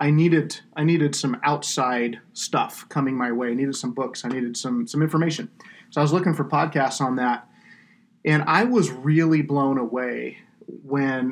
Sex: male